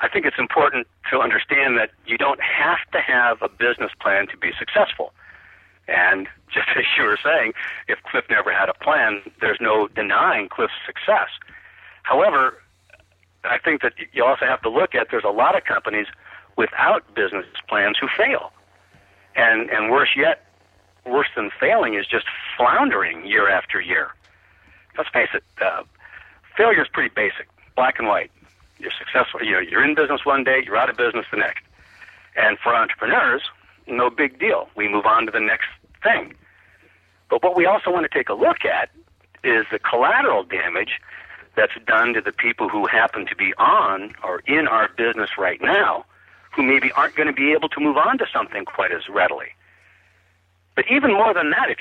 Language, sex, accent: English, male, American